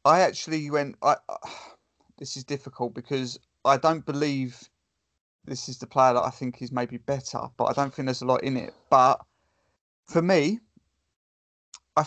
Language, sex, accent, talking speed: English, male, British, 175 wpm